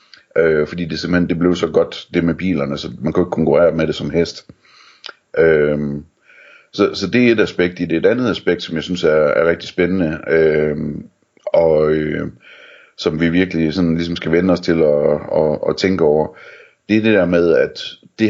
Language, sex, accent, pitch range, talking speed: Danish, male, native, 80-105 Hz, 185 wpm